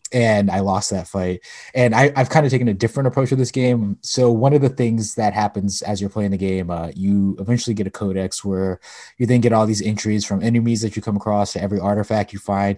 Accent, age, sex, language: American, 20-39, male, English